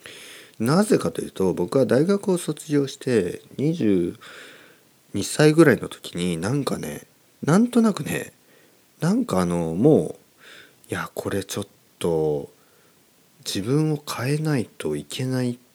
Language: Japanese